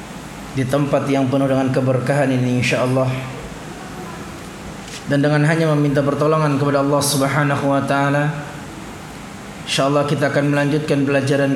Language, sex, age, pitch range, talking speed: Indonesian, male, 20-39, 145-170 Hz, 120 wpm